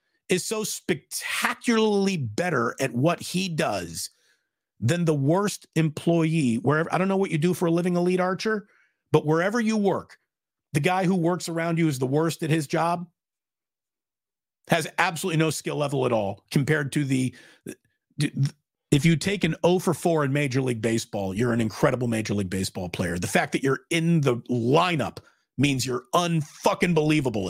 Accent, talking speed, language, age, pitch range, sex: American, 170 wpm, English, 40-59, 140-180 Hz, male